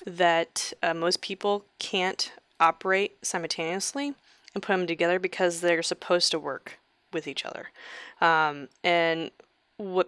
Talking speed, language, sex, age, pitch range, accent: 130 wpm, English, female, 20-39, 165-205 Hz, American